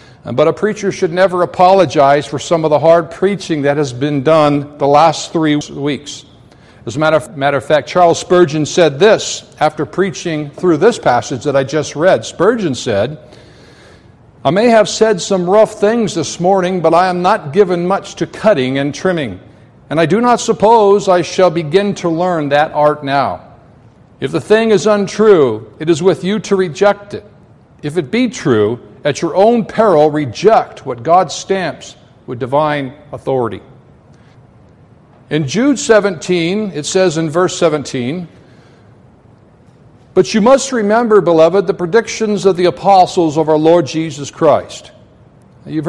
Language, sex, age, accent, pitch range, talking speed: English, male, 60-79, American, 150-195 Hz, 160 wpm